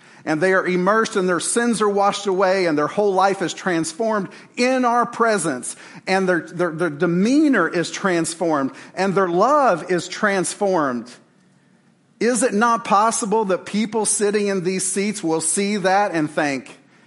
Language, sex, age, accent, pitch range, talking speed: English, male, 50-69, American, 145-200 Hz, 160 wpm